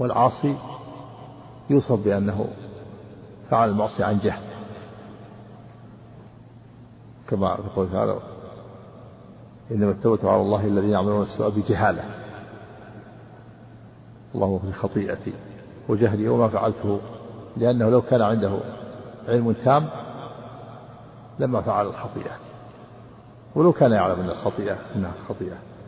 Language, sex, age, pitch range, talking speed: Arabic, male, 50-69, 105-120 Hz, 90 wpm